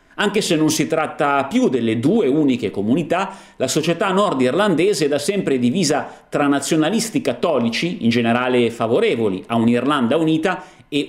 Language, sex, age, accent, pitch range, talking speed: Italian, male, 40-59, native, 135-205 Hz, 145 wpm